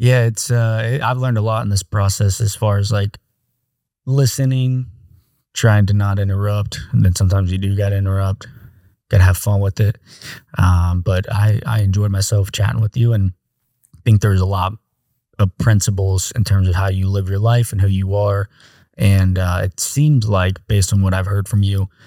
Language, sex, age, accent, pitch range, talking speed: English, male, 20-39, American, 95-115 Hz, 200 wpm